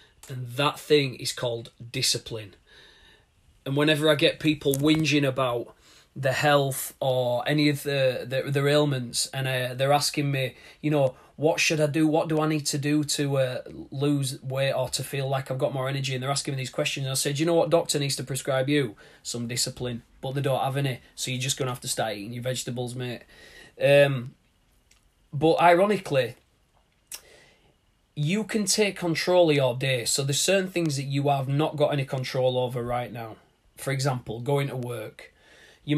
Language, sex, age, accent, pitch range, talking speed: English, male, 30-49, British, 130-150 Hz, 190 wpm